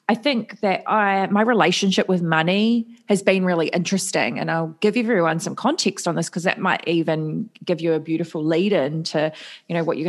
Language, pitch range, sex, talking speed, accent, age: English, 165-205 Hz, female, 200 wpm, Australian, 20-39